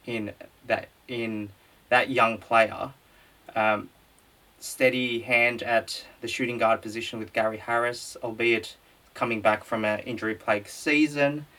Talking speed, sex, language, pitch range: 125 wpm, male, English, 110-120 Hz